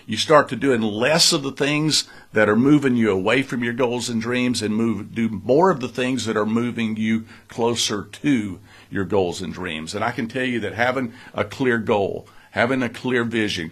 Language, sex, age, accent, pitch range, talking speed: English, male, 50-69, American, 105-130 Hz, 215 wpm